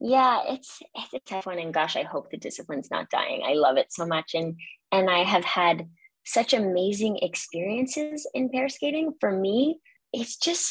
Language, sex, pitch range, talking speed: English, female, 170-255 Hz, 190 wpm